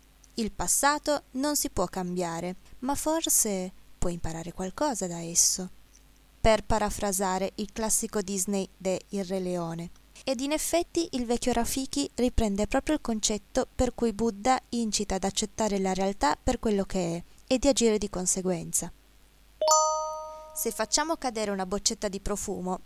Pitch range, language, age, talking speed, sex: 185-255 Hz, Italian, 20-39, 145 wpm, female